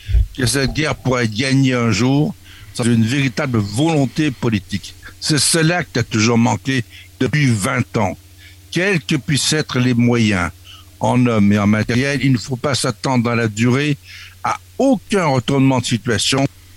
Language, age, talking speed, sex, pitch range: French, 60-79, 165 wpm, male, 105-140 Hz